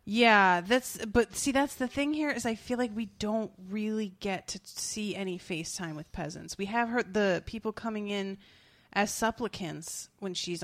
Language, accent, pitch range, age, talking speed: English, American, 170-210 Hz, 30-49, 185 wpm